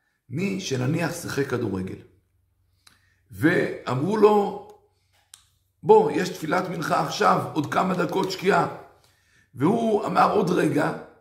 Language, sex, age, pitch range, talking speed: Hebrew, male, 50-69, 110-170 Hz, 100 wpm